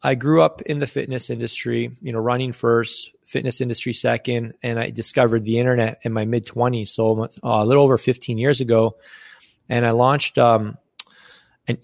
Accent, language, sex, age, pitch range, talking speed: American, English, male, 20-39, 115-150 Hz, 175 wpm